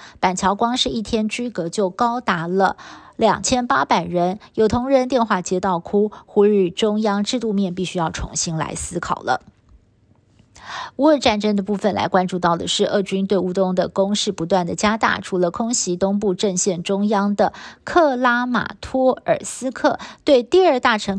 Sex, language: female, Chinese